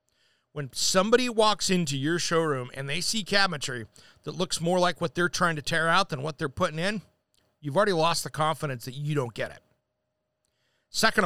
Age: 40-59